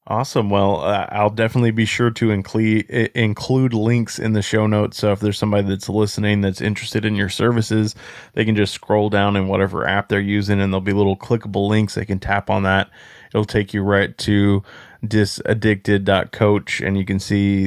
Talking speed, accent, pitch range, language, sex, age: 195 wpm, American, 95-110 Hz, English, male, 20-39